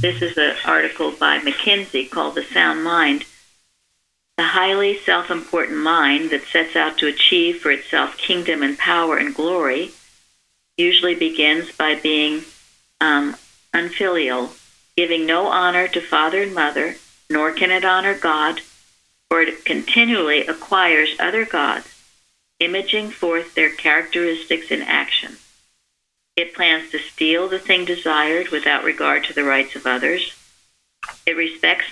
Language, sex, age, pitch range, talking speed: English, female, 50-69, 150-180 Hz, 135 wpm